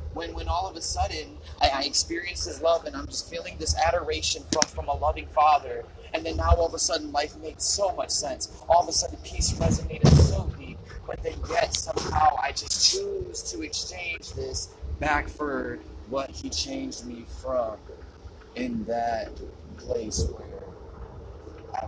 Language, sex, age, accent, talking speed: English, male, 30-49, American, 175 wpm